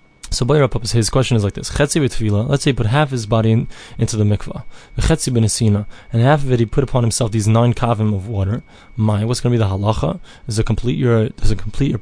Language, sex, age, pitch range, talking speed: English, male, 20-39, 115-135 Hz, 230 wpm